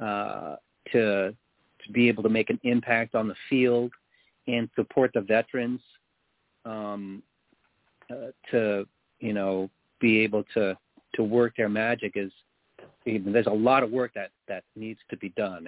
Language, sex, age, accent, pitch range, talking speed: English, male, 40-59, American, 105-130 Hz, 165 wpm